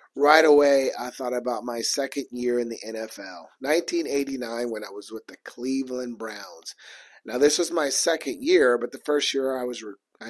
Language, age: English, 30-49